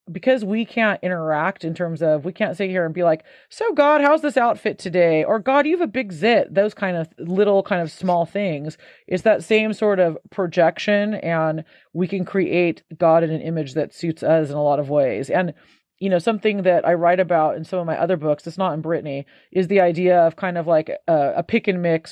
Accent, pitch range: American, 160-190 Hz